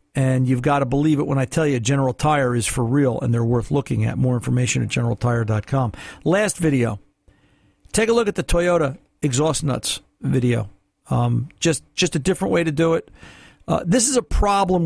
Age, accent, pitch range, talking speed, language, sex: 50-69, American, 130-175 Hz, 200 wpm, English, male